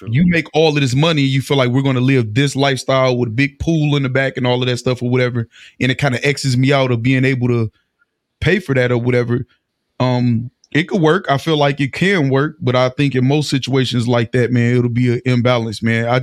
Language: English